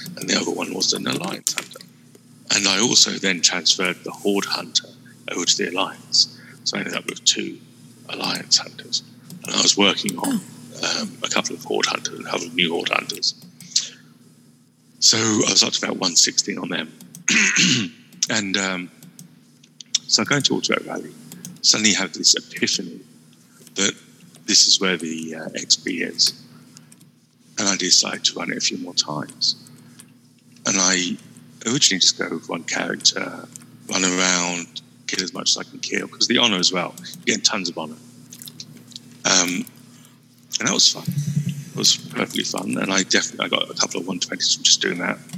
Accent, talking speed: British, 175 wpm